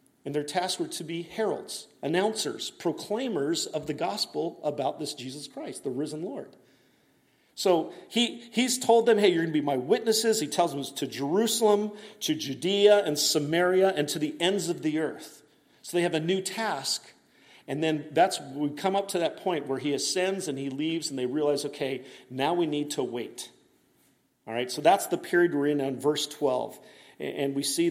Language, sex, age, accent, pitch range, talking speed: English, male, 40-59, American, 140-195 Hz, 200 wpm